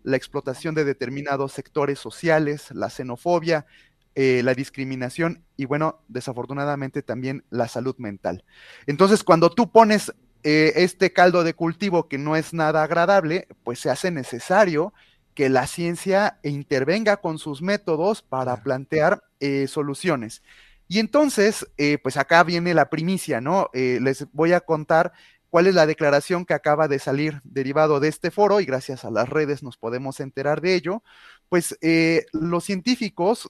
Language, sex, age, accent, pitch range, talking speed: Spanish, male, 30-49, Mexican, 140-180 Hz, 155 wpm